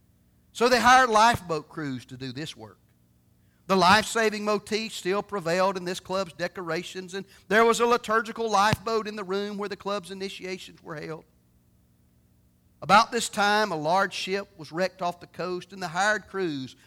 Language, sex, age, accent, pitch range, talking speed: English, male, 40-59, American, 130-205 Hz, 170 wpm